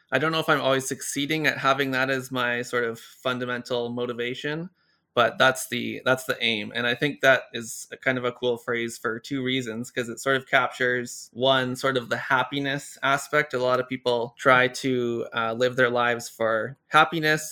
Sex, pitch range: male, 115-130 Hz